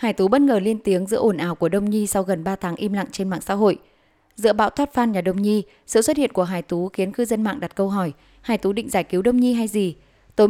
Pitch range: 185-220 Hz